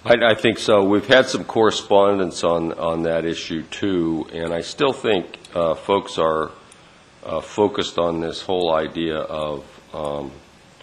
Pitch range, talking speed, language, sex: 75-85 Hz, 155 wpm, English, male